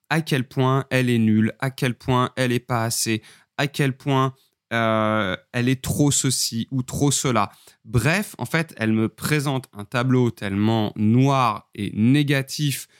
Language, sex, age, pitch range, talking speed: French, male, 20-39, 110-140 Hz, 165 wpm